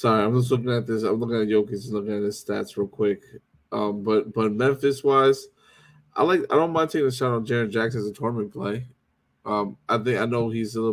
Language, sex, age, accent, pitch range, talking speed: English, male, 20-39, American, 110-130 Hz, 245 wpm